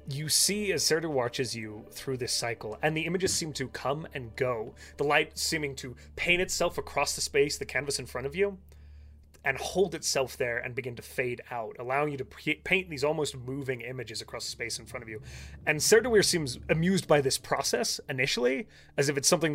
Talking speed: 210 wpm